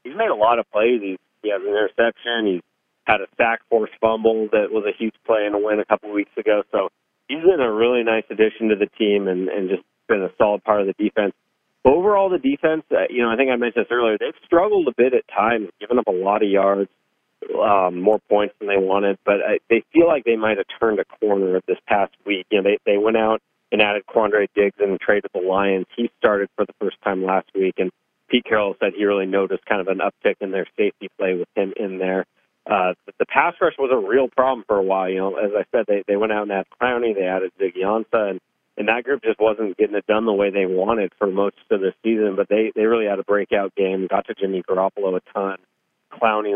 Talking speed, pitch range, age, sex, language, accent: 255 wpm, 95-115 Hz, 40-59, male, English, American